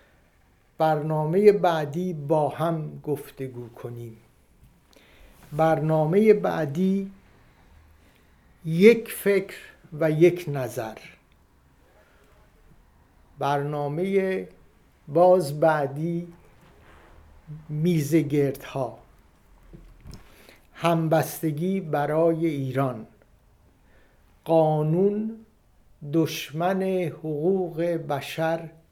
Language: Persian